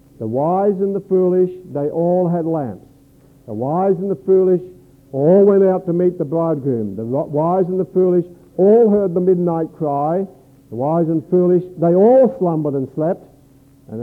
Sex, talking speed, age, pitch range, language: male, 180 wpm, 60-79, 125-160 Hz, English